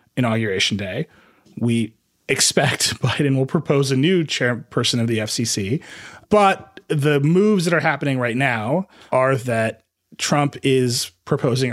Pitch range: 115-150 Hz